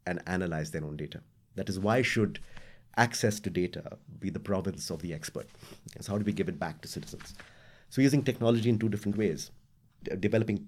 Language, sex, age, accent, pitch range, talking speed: English, male, 30-49, Indian, 85-115 Hz, 210 wpm